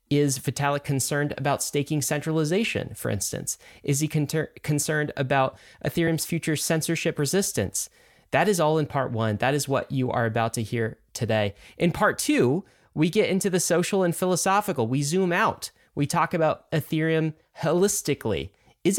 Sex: male